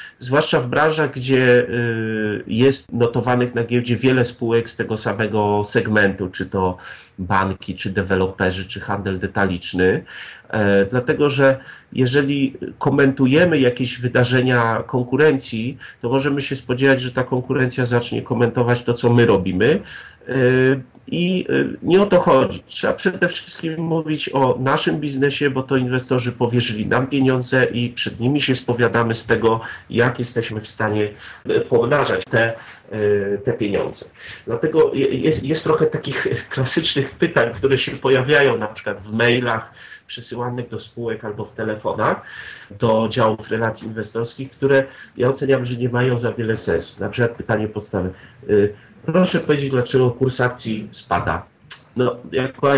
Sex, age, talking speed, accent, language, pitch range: male, 40-59, 135 wpm, native, Polish, 110-135 Hz